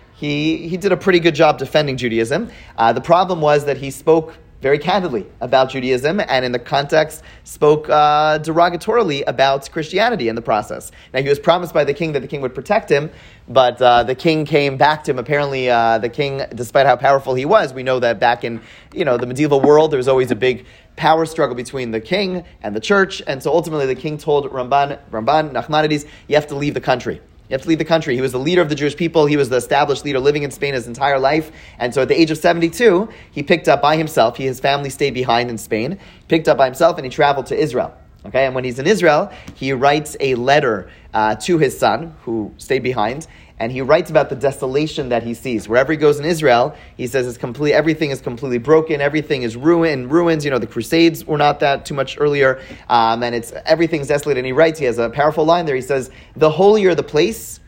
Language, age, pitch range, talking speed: English, 30-49, 130-160 Hz, 235 wpm